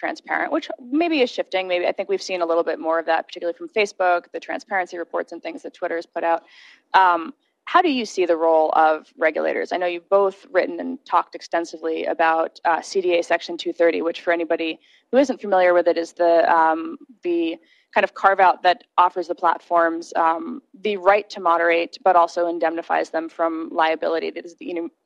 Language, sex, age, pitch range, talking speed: English, female, 20-39, 165-205 Hz, 205 wpm